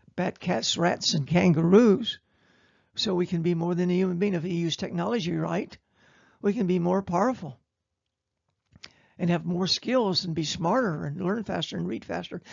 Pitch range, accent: 165-215 Hz, American